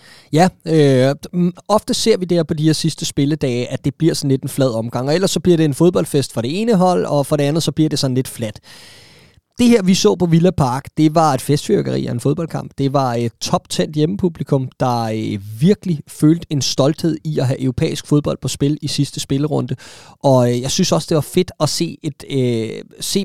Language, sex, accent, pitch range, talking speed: Danish, male, native, 125-160 Hz, 220 wpm